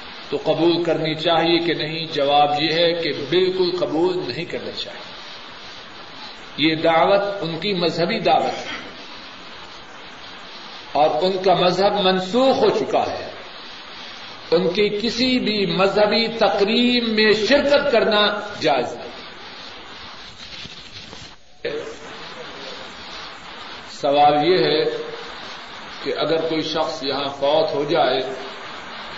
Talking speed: 105 wpm